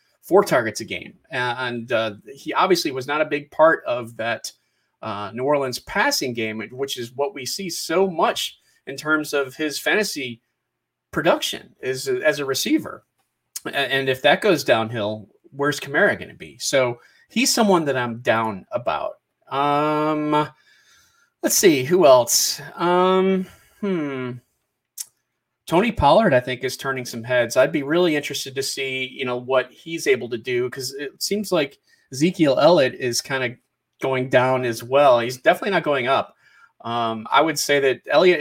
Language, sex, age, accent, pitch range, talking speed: English, male, 30-49, American, 125-160 Hz, 165 wpm